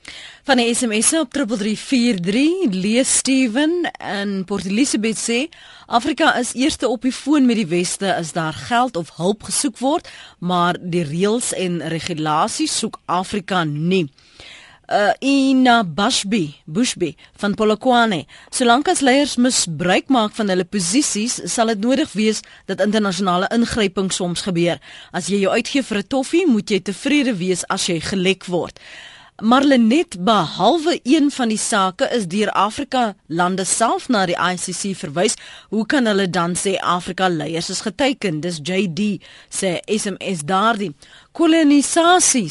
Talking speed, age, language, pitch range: 145 wpm, 30-49, Dutch, 180-250 Hz